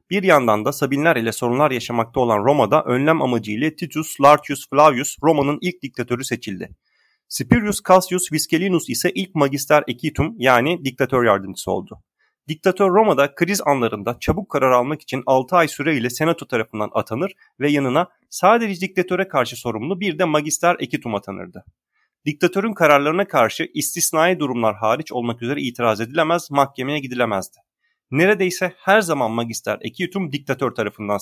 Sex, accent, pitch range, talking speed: male, native, 125-170 Hz, 140 wpm